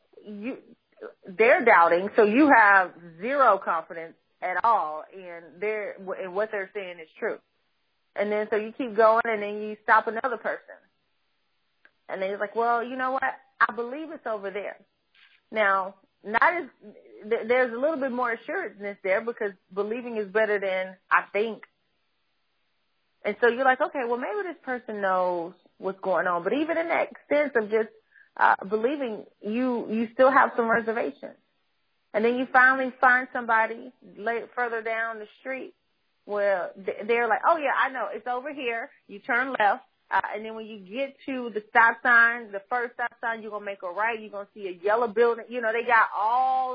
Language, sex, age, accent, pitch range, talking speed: English, female, 30-49, American, 205-245 Hz, 185 wpm